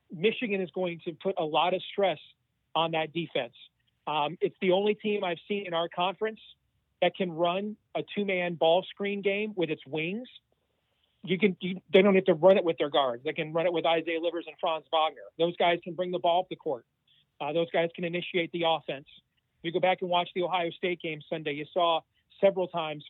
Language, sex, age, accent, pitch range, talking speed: English, male, 40-59, American, 160-190 Hz, 220 wpm